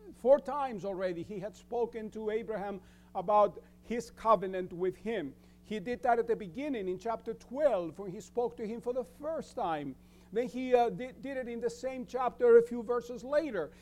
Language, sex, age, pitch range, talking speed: English, male, 50-69, 170-240 Hz, 190 wpm